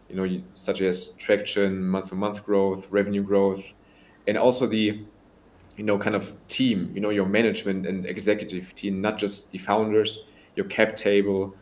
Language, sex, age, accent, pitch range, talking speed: English, male, 20-39, German, 95-110 Hz, 170 wpm